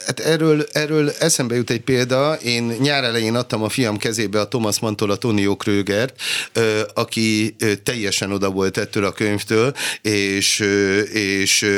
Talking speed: 140 wpm